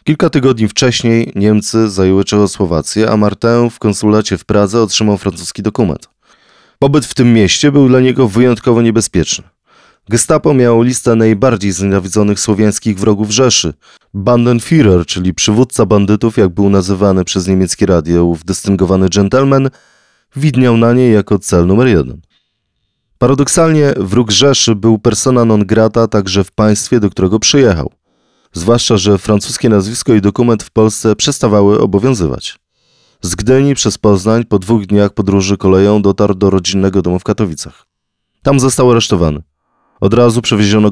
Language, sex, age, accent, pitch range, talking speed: Polish, male, 30-49, native, 100-120 Hz, 140 wpm